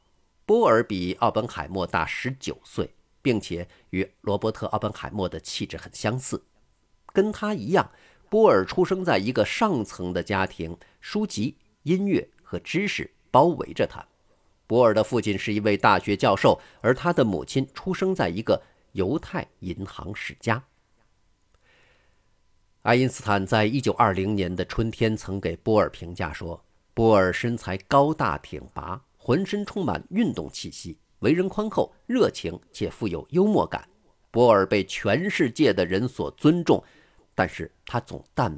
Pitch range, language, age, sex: 90-125 Hz, Chinese, 50-69, male